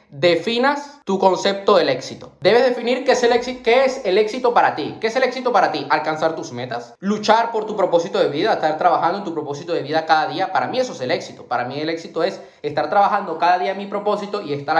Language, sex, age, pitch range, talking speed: Spanish, male, 20-39, 160-215 Hz, 245 wpm